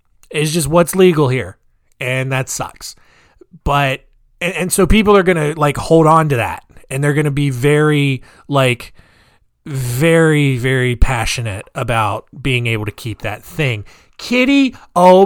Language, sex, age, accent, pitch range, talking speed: English, male, 30-49, American, 115-170 Hz, 155 wpm